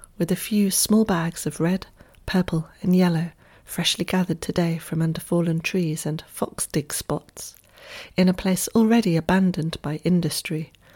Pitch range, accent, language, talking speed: 160-185 Hz, British, English, 150 wpm